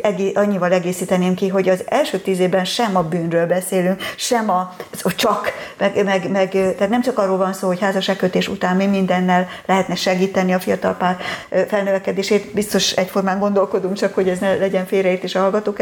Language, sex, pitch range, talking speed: Hungarian, female, 180-220 Hz, 175 wpm